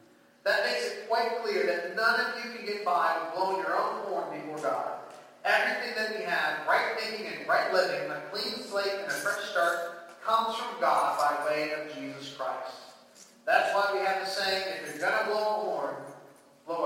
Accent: American